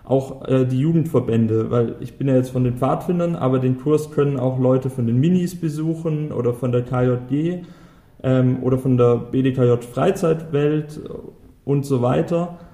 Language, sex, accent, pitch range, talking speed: German, male, German, 125-150 Hz, 165 wpm